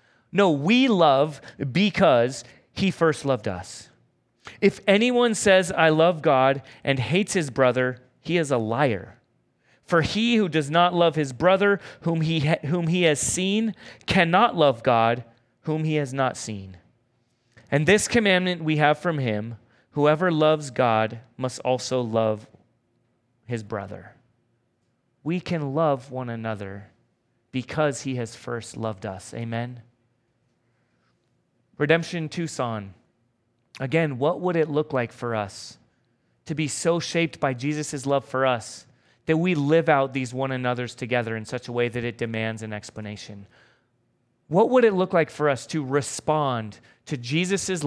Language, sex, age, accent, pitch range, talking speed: English, male, 30-49, American, 120-160 Hz, 150 wpm